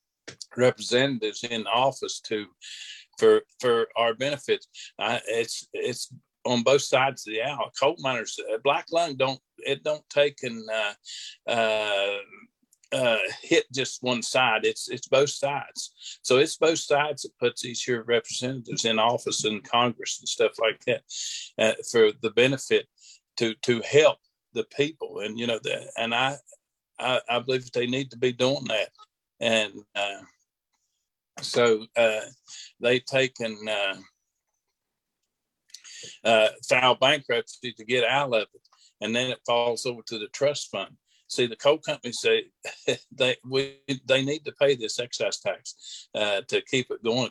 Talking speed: 155 wpm